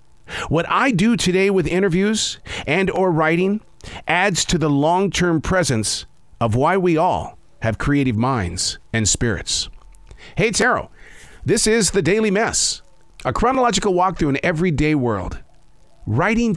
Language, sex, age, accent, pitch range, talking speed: English, male, 50-69, American, 110-180 Hz, 135 wpm